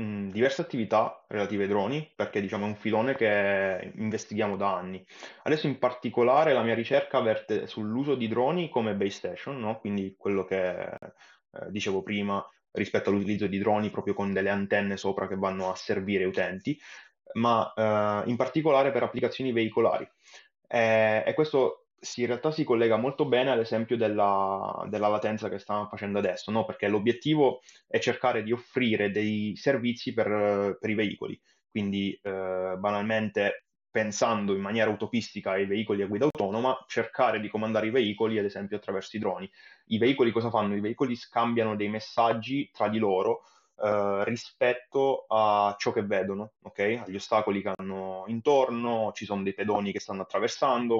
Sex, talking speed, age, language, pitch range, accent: male, 160 wpm, 20-39, Italian, 100-120 Hz, native